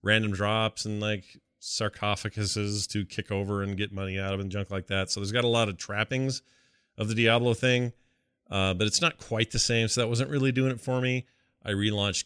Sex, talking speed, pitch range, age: male, 220 wpm, 95-125 Hz, 40-59